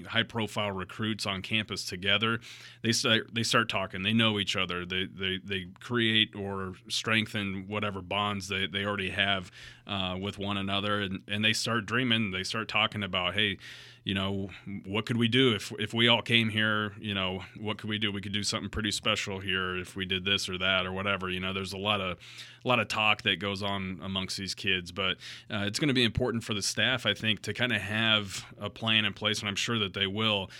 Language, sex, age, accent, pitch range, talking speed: English, male, 30-49, American, 95-110 Hz, 225 wpm